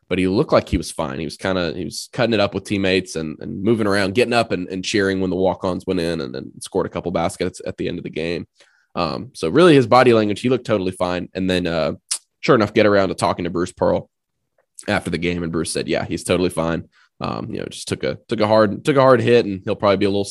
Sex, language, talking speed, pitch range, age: male, English, 280 wpm, 90-110 Hz, 20-39